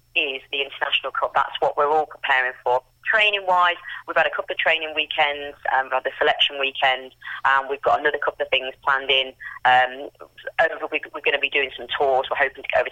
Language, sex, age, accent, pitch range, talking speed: English, female, 20-39, British, 130-155 Hz, 230 wpm